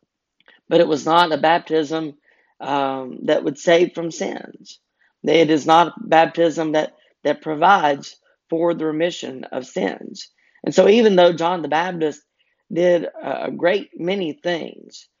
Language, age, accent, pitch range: English, 40-59, American, 150-175 Hz